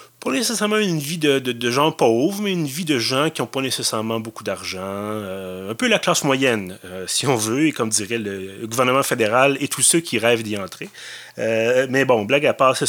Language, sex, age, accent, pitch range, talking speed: French, male, 30-49, Canadian, 105-140 Hz, 235 wpm